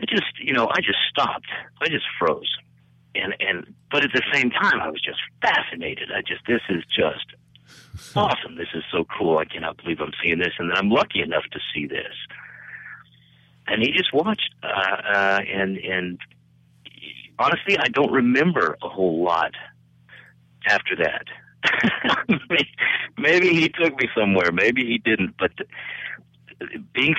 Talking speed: 165 wpm